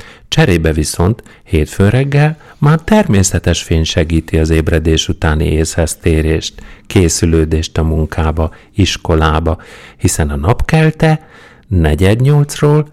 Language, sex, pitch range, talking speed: Hungarian, male, 80-125 Hz, 100 wpm